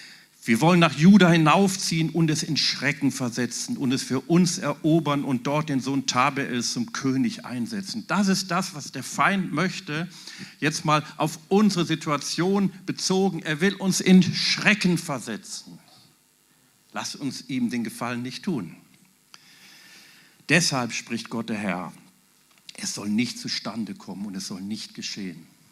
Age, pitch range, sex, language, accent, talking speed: 50-69, 125-200 Hz, male, German, German, 150 wpm